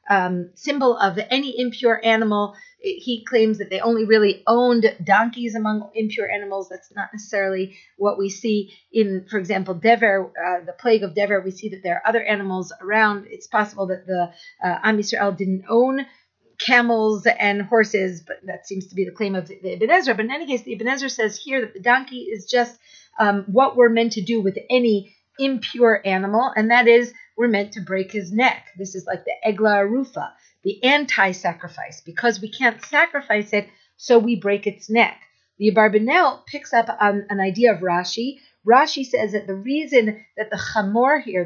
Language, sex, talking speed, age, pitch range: English, female, 190 wpm, 40-59, 195-240 Hz